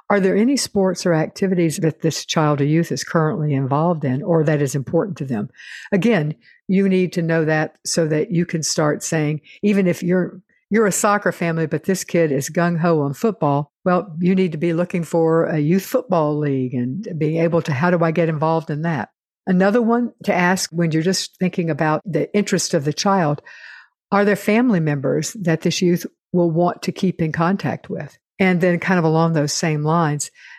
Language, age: English, 60-79